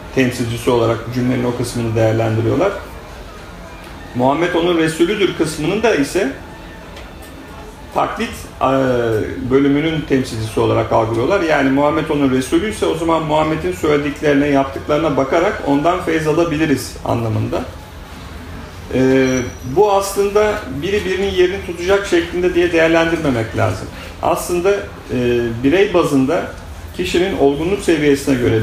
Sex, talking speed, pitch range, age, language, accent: male, 105 wpm, 120-170 Hz, 40-59, English, Turkish